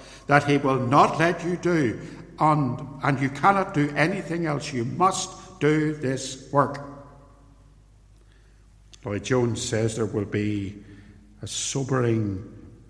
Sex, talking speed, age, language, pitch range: male, 120 wpm, 60-79, English, 105-135 Hz